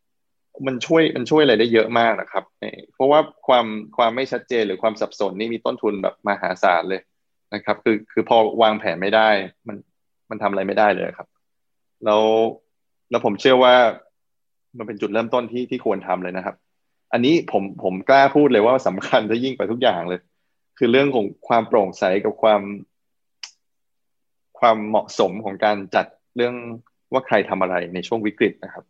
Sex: male